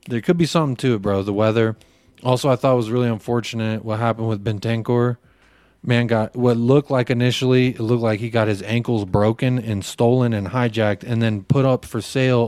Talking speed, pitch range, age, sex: 210 wpm, 105-135 Hz, 30-49, male